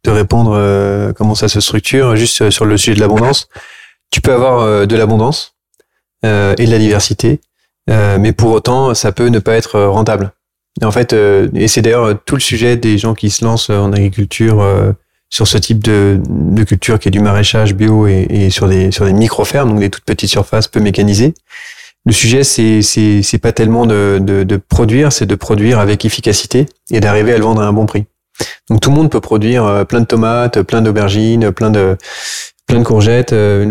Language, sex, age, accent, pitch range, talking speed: French, male, 20-39, French, 100-115 Hz, 210 wpm